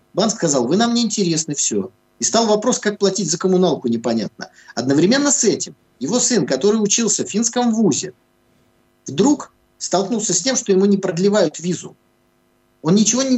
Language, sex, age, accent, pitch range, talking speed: Russian, male, 50-69, native, 165-215 Hz, 155 wpm